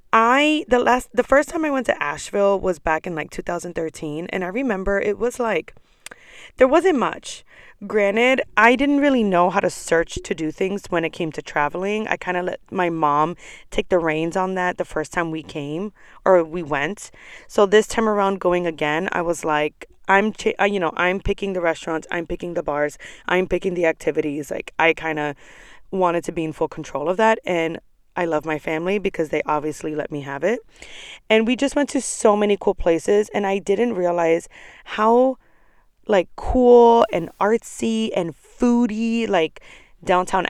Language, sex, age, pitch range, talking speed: English, female, 20-39, 165-225 Hz, 190 wpm